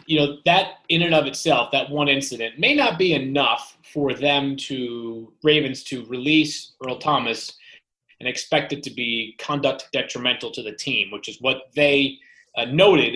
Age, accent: 30-49, American